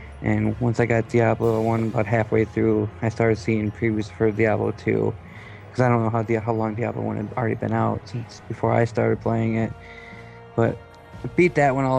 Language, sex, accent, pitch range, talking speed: English, male, American, 110-120 Hz, 210 wpm